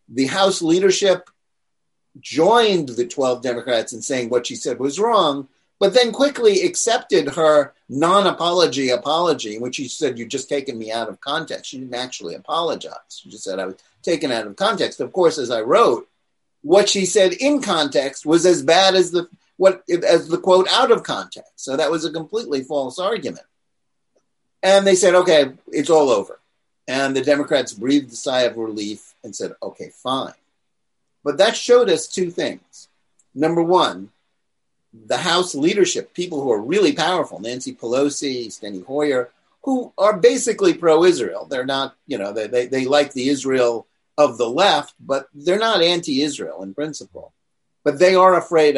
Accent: American